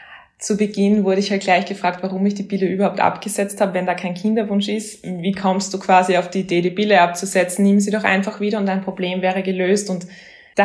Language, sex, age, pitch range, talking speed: German, female, 20-39, 180-200 Hz, 230 wpm